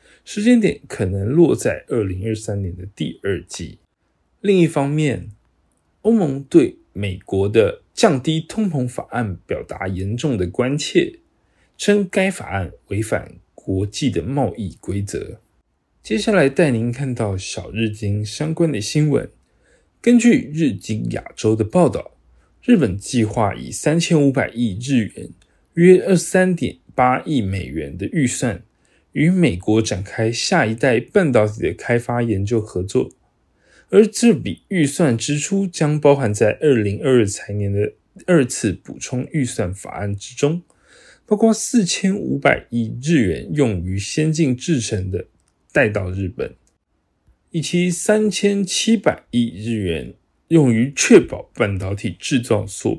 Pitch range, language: 105-170 Hz, Chinese